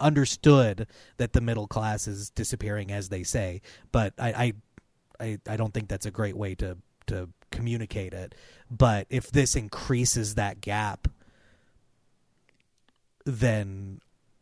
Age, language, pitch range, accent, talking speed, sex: 30-49, English, 100-120 Hz, American, 135 wpm, male